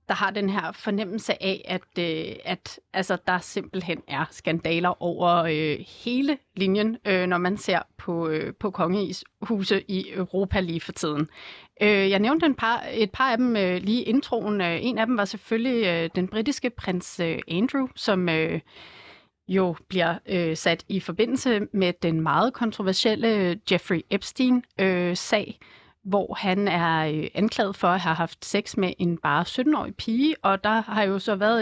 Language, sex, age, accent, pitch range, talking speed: Danish, female, 30-49, native, 175-225 Hz, 170 wpm